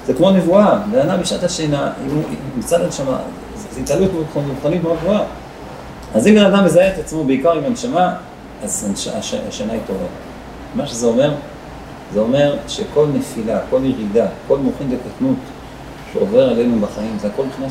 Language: Hebrew